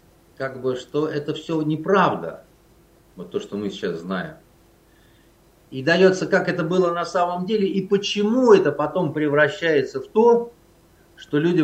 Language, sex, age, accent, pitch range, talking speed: Russian, male, 50-69, native, 125-170 Hz, 150 wpm